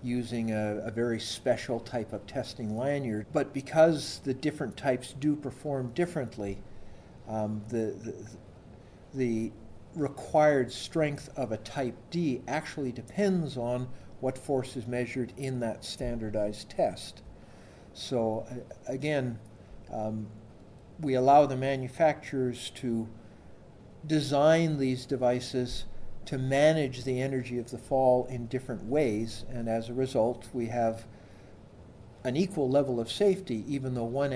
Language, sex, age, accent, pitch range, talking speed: English, male, 50-69, American, 110-135 Hz, 125 wpm